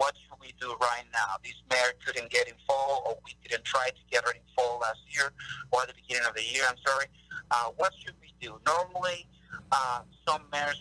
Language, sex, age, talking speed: English, male, 50-69, 230 wpm